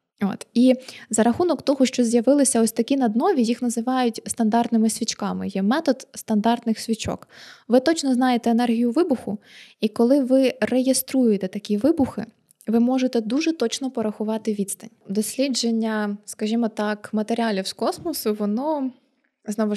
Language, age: Ukrainian, 20-39